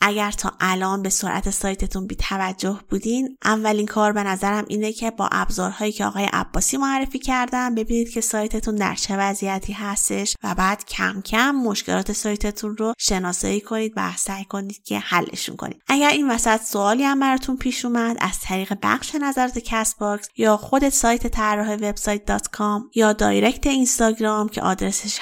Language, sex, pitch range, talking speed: Persian, female, 200-240 Hz, 155 wpm